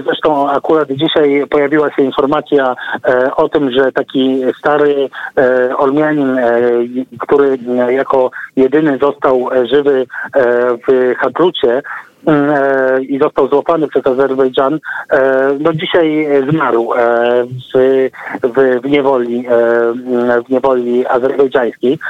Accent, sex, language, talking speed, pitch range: native, male, Polish, 90 wpm, 130-155 Hz